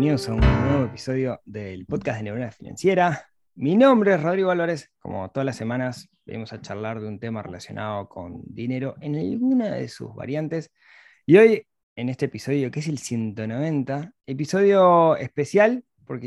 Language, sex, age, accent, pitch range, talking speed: Spanish, male, 20-39, Argentinian, 115-155 Hz, 165 wpm